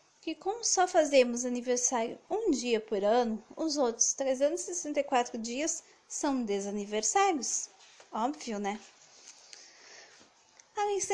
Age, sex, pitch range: 20-39, female, 240-325 Hz